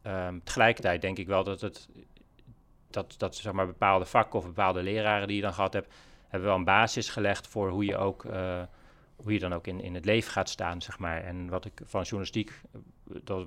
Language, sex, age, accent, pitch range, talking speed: Dutch, male, 40-59, Dutch, 95-105 Hz, 220 wpm